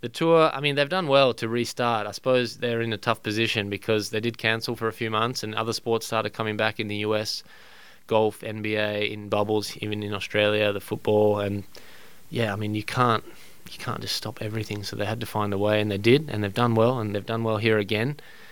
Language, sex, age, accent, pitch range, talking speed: English, male, 20-39, Australian, 105-110 Hz, 235 wpm